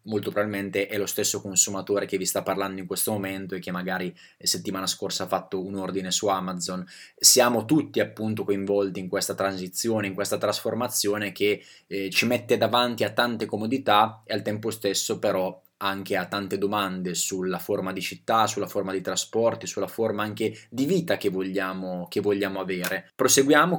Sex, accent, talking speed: male, native, 175 wpm